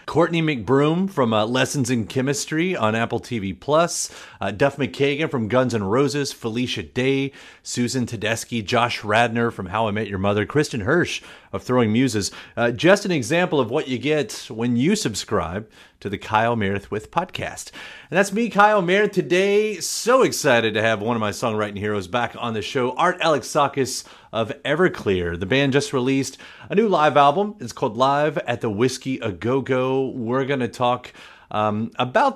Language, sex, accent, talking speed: English, male, American, 175 wpm